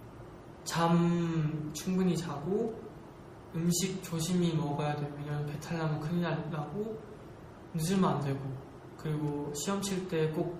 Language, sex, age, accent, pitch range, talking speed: English, male, 20-39, Korean, 155-180 Hz, 100 wpm